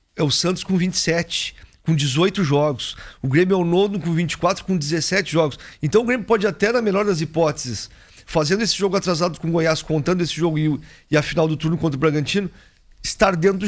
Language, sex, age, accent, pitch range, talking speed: Portuguese, male, 40-59, Brazilian, 135-175 Hz, 205 wpm